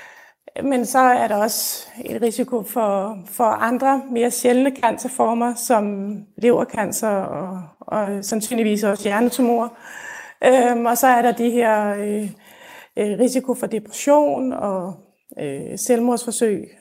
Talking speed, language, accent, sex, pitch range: 120 wpm, Danish, native, female, 220-265 Hz